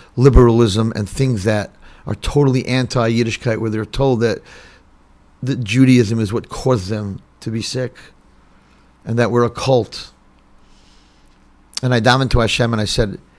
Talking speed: 150 wpm